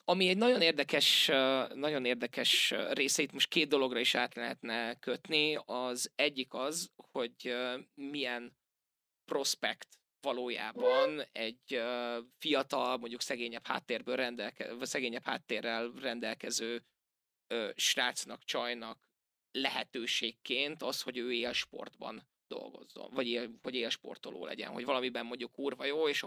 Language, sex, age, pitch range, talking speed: Hungarian, male, 20-39, 120-155 Hz, 115 wpm